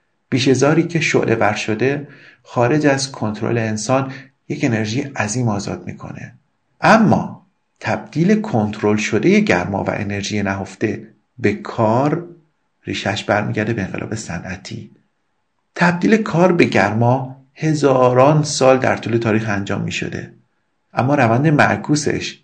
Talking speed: 120 wpm